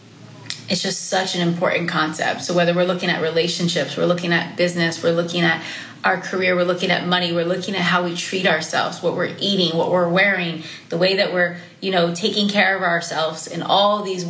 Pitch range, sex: 170-195 Hz, female